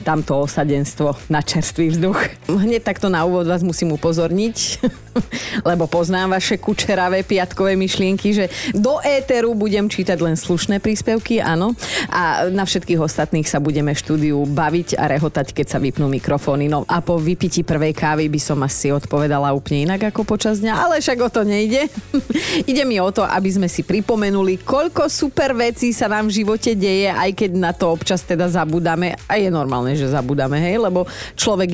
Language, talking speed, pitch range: Slovak, 175 wpm, 165-225 Hz